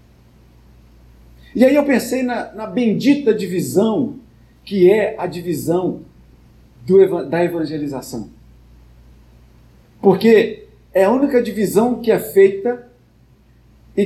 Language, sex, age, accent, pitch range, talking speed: Portuguese, male, 50-69, Brazilian, 135-225 Hz, 100 wpm